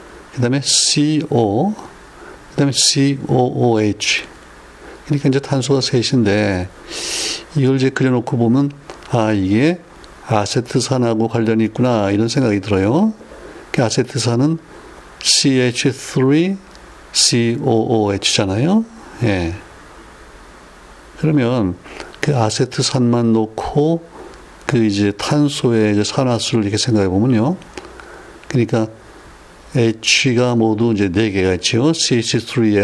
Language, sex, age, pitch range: Korean, male, 60-79, 105-140 Hz